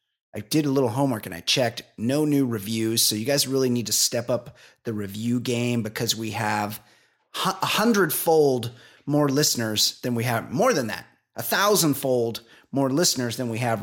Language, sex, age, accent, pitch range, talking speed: English, male, 30-49, American, 110-140 Hz, 180 wpm